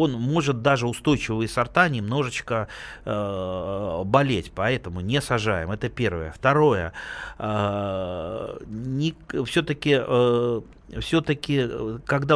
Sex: male